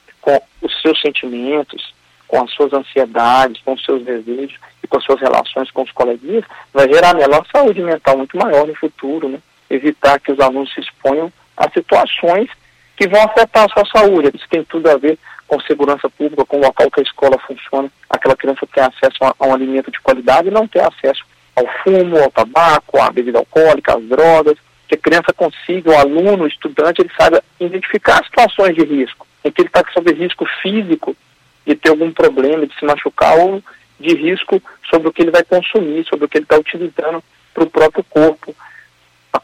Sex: male